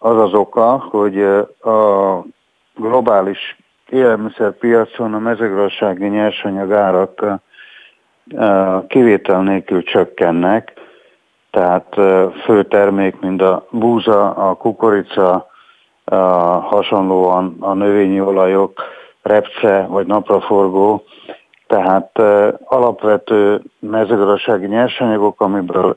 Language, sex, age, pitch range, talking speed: Hungarian, male, 50-69, 95-105 Hz, 80 wpm